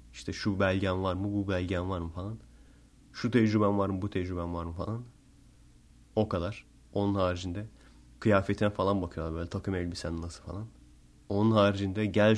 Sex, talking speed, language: male, 165 wpm, Turkish